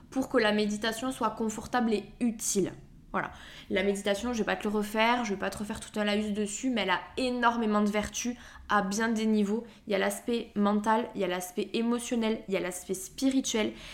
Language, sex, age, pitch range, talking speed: French, female, 20-39, 200-235 Hz, 230 wpm